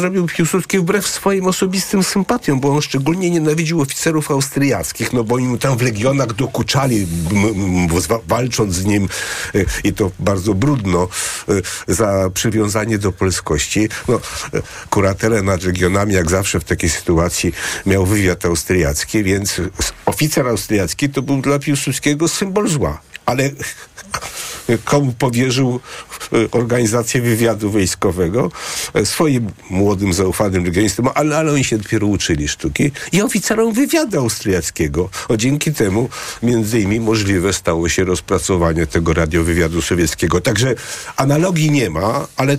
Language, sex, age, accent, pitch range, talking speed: Polish, male, 50-69, native, 90-135 Hz, 135 wpm